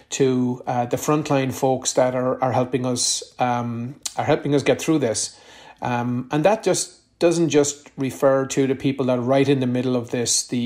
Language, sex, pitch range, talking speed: English, male, 125-140 Hz, 205 wpm